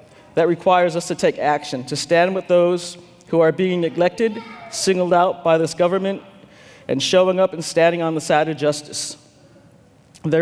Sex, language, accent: male, English, American